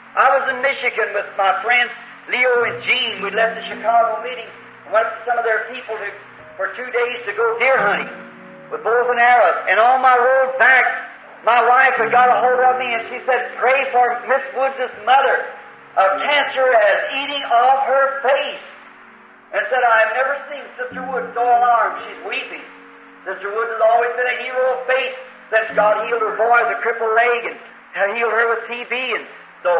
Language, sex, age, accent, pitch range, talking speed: English, male, 50-69, American, 225-260 Hz, 195 wpm